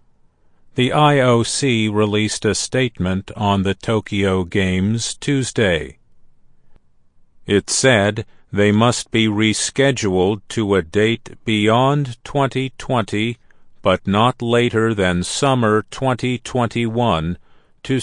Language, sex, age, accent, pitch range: Chinese, male, 50-69, American, 100-125 Hz